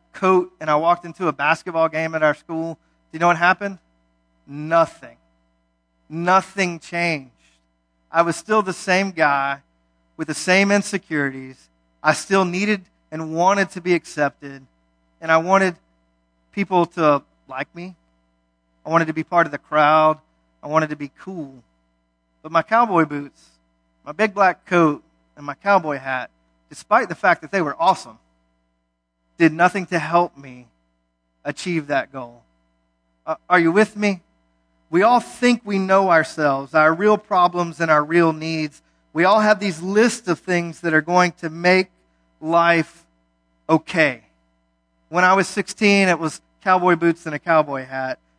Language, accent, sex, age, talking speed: English, American, male, 40-59, 160 wpm